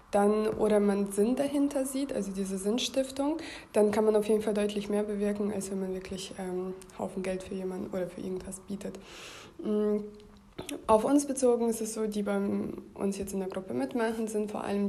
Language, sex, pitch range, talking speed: German, female, 195-215 Hz, 200 wpm